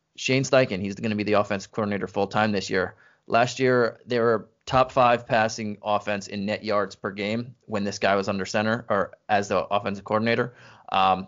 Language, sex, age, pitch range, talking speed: English, male, 20-39, 100-120 Hz, 195 wpm